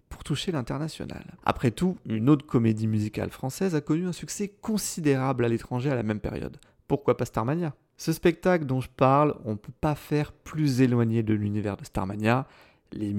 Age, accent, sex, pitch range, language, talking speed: 30-49, French, male, 110-150 Hz, French, 185 wpm